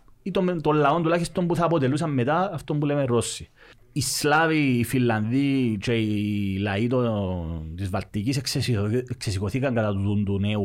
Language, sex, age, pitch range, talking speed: Greek, male, 30-49, 110-160 Hz, 190 wpm